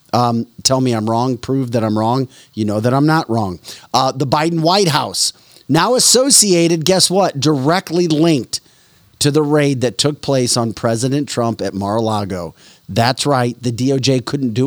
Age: 40-59